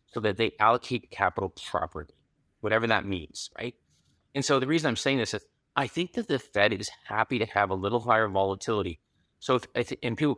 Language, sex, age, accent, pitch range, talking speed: English, male, 30-49, American, 105-130 Hz, 195 wpm